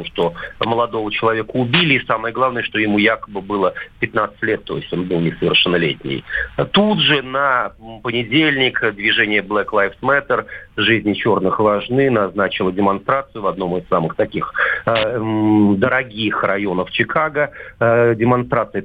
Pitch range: 105-130 Hz